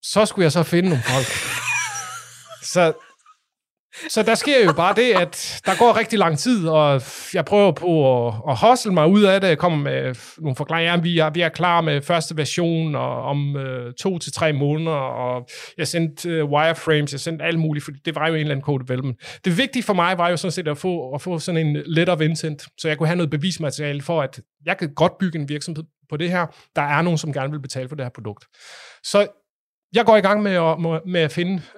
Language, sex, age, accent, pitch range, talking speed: English, male, 30-49, Danish, 140-180 Hz, 225 wpm